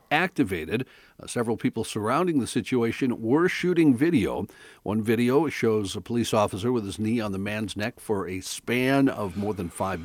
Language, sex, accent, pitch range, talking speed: English, male, American, 100-125 Hz, 180 wpm